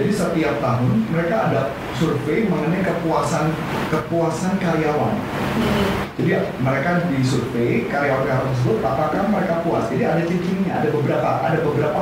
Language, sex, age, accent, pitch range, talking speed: Indonesian, male, 30-49, native, 130-170 Hz, 125 wpm